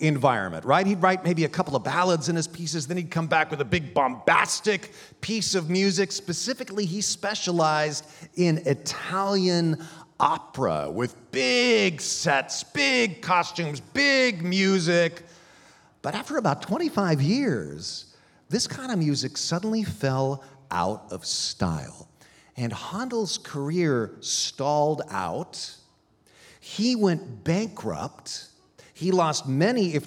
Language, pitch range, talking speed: English, 135-185 Hz, 125 wpm